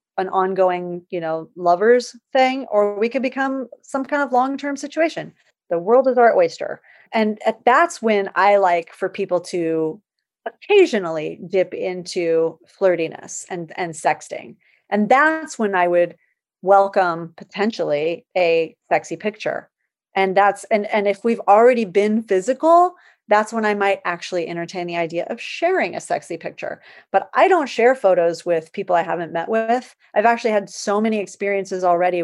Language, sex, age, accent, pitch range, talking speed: English, female, 30-49, American, 180-235 Hz, 160 wpm